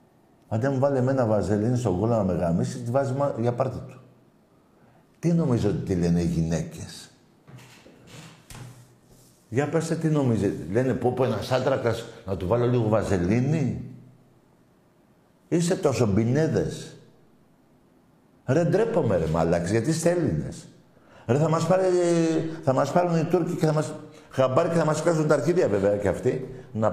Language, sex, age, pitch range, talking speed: Greek, male, 60-79, 110-155 Hz, 145 wpm